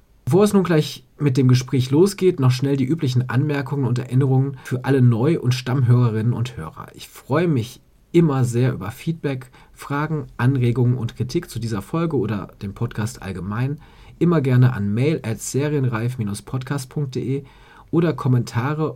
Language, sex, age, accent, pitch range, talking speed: German, male, 40-59, German, 115-150 Hz, 150 wpm